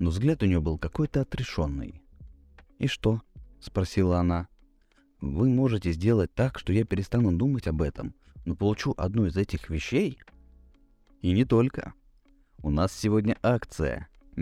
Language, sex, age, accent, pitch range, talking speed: Russian, male, 30-49, native, 80-130 Hz, 145 wpm